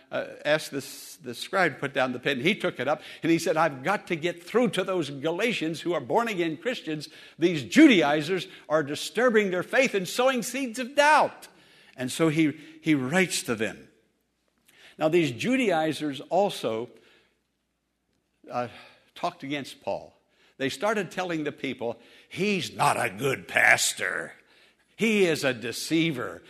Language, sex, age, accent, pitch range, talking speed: English, male, 60-79, American, 135-215 Hz, 155 wpm